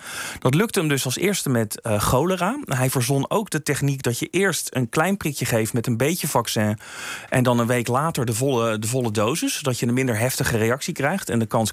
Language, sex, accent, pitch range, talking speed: Dutch, male, Dutch, 115-150 Hz, 230 wpm